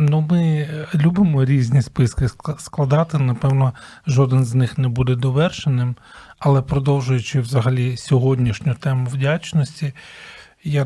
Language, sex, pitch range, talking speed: Ukrainian, male, 130-155 Hz, 110 wpm